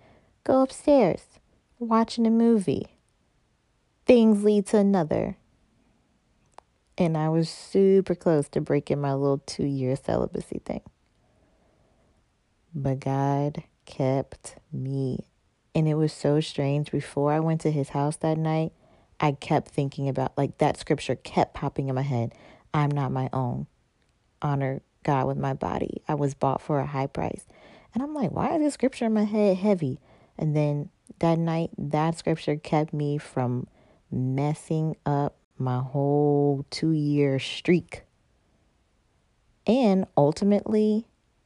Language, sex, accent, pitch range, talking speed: English, female, American, 140-170 Hz, 135 wpm